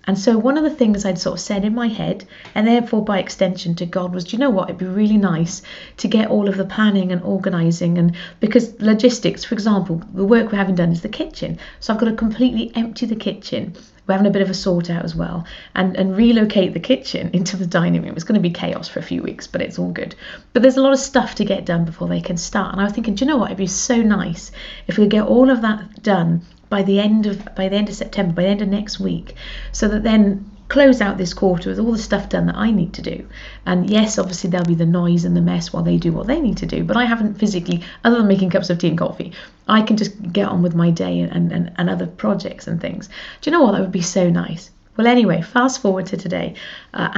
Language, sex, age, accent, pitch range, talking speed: English, female, 30-49, British, 175-215 Hz, 275 wpm